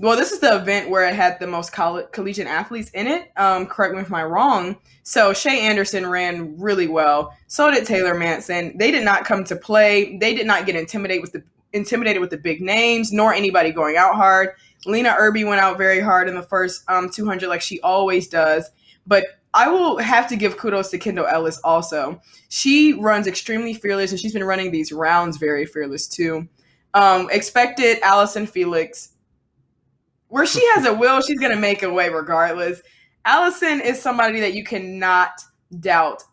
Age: 20-39